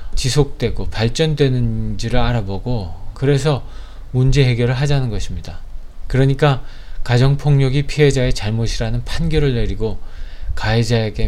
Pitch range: 100-130 Hz